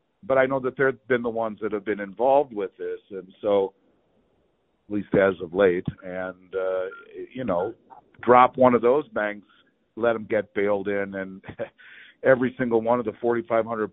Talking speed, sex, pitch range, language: 185 wpm, male, 100-125 Hz, English